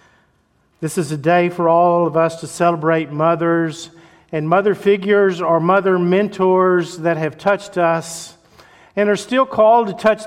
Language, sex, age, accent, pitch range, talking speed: English, male, 50-69, American, 145-175 Hz, 160 wpm